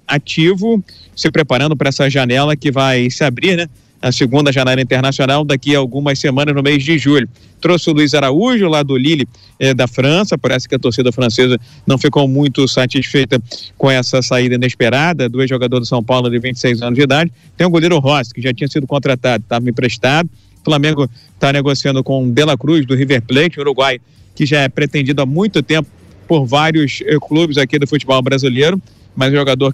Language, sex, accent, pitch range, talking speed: Portuguese, male, Brazilian, 130-155 Hz, 195 wpm